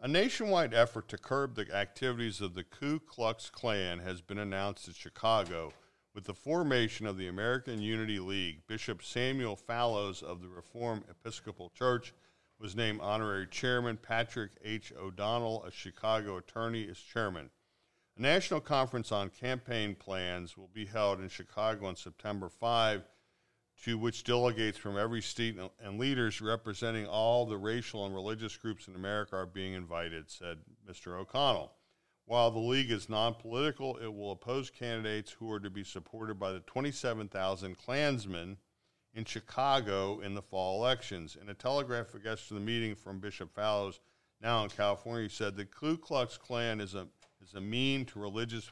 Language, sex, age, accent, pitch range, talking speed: English, male, 50-69, American, 100-120 Hz, 160 wpm